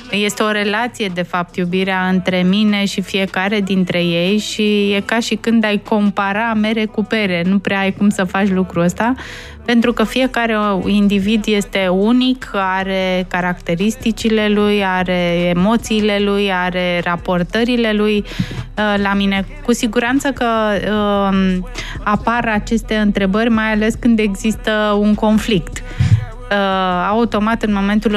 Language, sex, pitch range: Romanian, female, 190-215 Hz